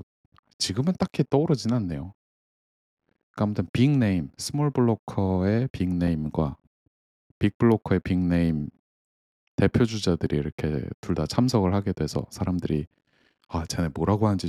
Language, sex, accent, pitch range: Korean, male, native, 80-110 Hz